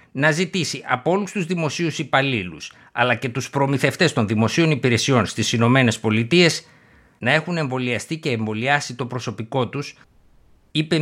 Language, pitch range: Greek, 115-160 Hz